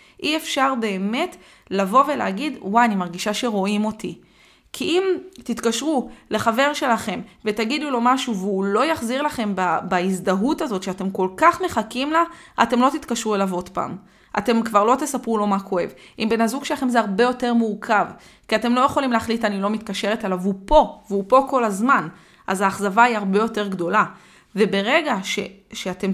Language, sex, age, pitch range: Hebrew, female, 20-39, 200-260 Hz